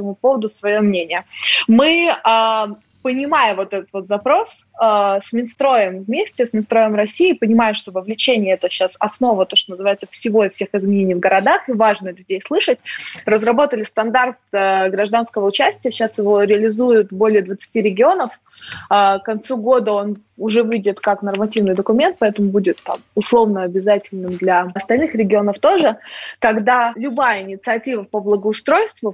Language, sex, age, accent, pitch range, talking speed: Russian, female, 20-39, native, 195-235 Hz, 150 wpm